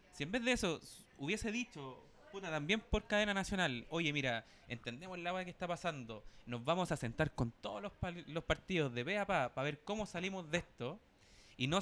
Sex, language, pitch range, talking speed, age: male, Spanish, 135-195 Hz, 215 wpm, 20-39